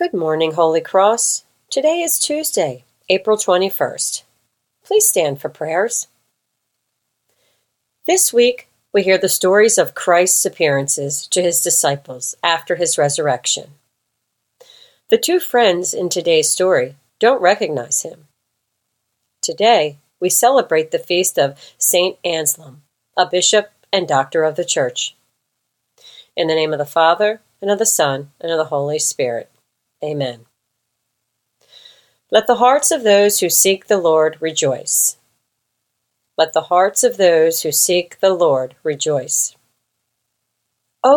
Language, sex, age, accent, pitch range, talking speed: English, female, 40-59, American, 145-200 Hz, 130 wpm